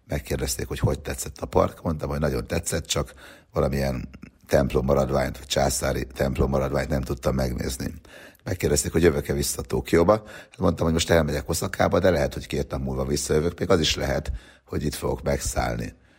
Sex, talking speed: male, 165 wpm